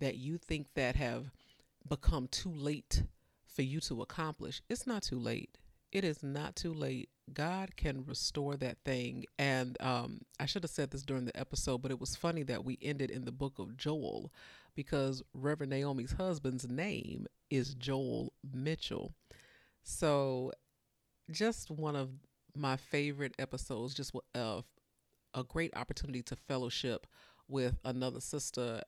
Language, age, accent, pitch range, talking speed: English, 40-59, American, 125-145 Hz, 150 wpm